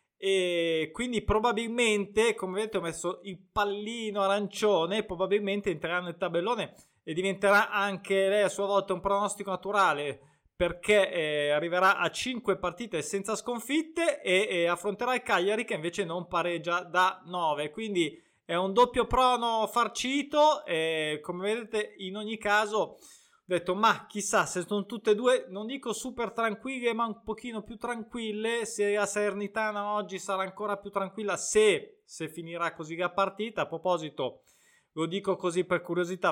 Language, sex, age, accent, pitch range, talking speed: Italian, male, 20-39, native, 170-215 Hz, 155 wpm